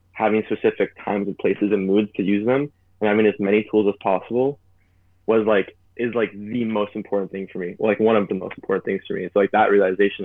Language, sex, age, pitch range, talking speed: English, male, 20-39, 95-105 Hz, 240 wpm